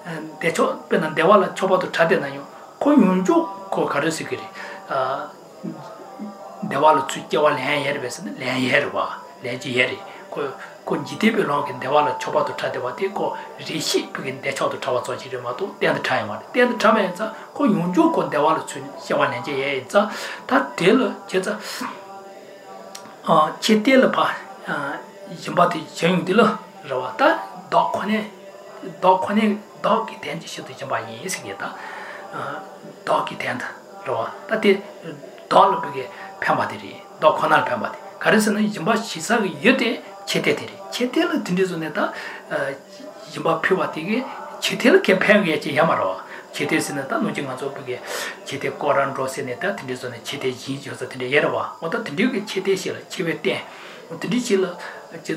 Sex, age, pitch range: male, 60-79, 155-215 Hz